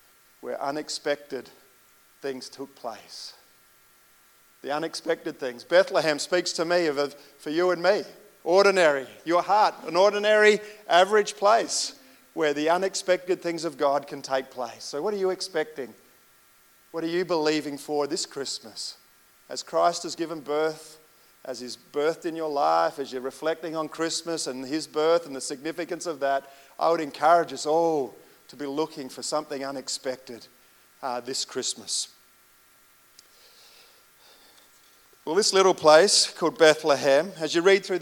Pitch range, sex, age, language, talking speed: 140-185 Hz, male, 40-59, English, 150 wpm